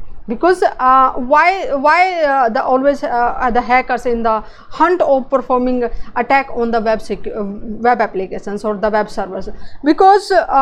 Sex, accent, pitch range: female, Indian, 225-290 Hz